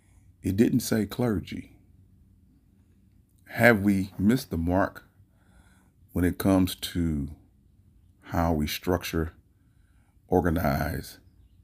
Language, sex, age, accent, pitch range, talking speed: English, male, 30-49, American, 85-100 Hz, 90 wpm